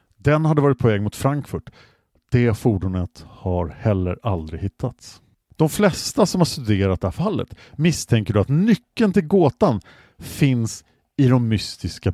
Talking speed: 150 wpm